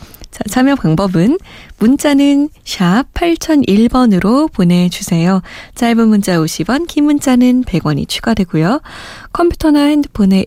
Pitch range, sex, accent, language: 175-255 Hz, female, native, Korean